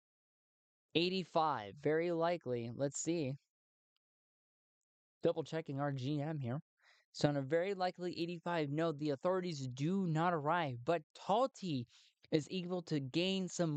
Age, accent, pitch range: 20-39, American, 140-180 Hz